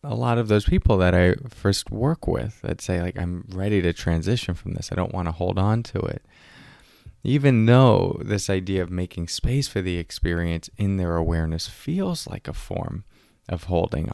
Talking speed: 195 wpm